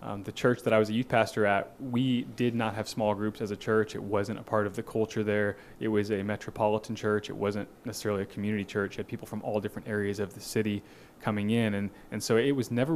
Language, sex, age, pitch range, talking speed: English, male, 20-39, 100-110 Hz, 260 wpm